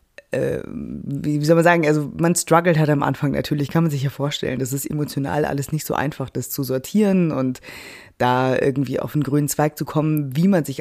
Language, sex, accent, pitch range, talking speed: German, female, German, 140-170 Hz, 210 wpm